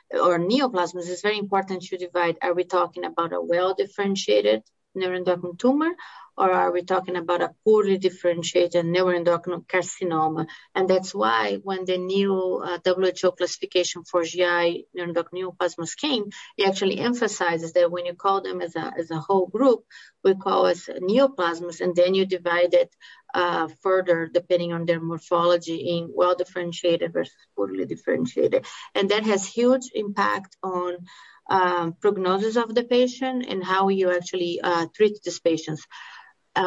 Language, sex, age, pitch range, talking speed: English, female, 30-49, 175-195 Hz, 155 wpm